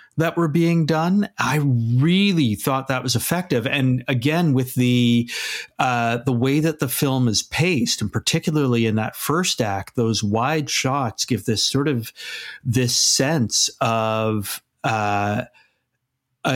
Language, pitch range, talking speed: English, 125-145 Hz, 140 wpm